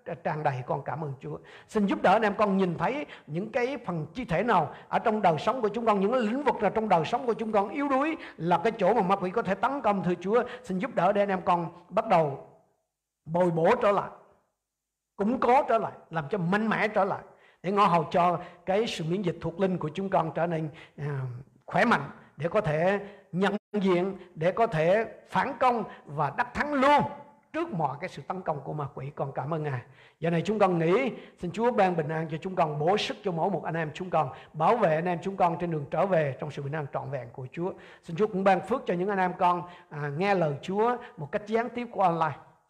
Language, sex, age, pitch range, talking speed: Vietnamese, male, 50-69, 155-205 Hz, 250 wpm